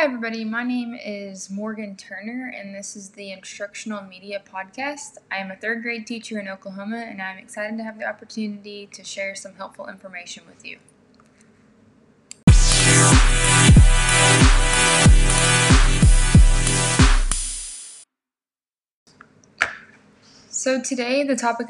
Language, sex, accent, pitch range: English, female, American, 195-235 Hz